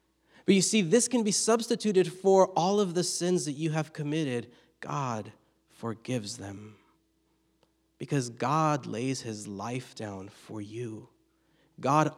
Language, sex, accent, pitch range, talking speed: English, male, American, 125-170 Hz, 135 wpm